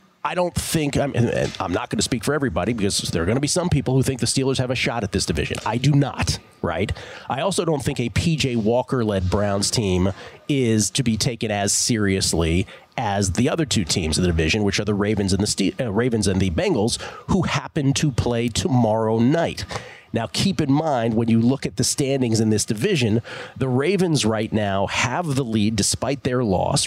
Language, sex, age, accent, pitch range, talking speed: English, male, 40-59, American, 105-135 Hz, 220 wpm